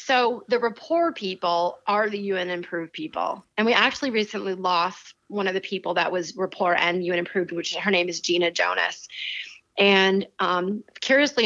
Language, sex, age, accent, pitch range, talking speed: English, female, 30-49, American, 175-210 Hz, 175 wpm